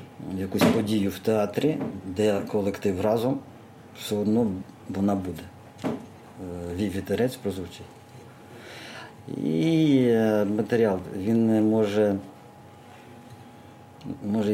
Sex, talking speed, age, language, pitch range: male, 80 wpm, 50-69, Ukrainian, 95-115 Hz